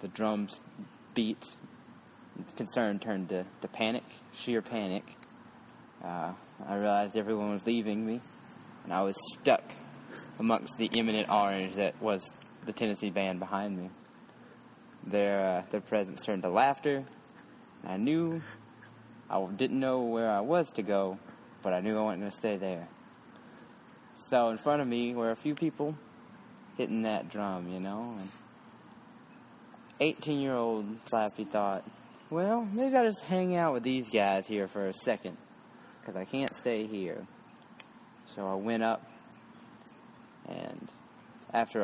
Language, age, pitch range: English, 20-39, 100-130 Hz